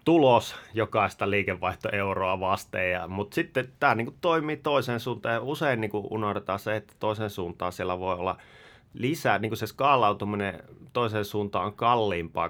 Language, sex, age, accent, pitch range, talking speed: Finnish, male, 30-49, native, 90-110 Hz, 145 wpm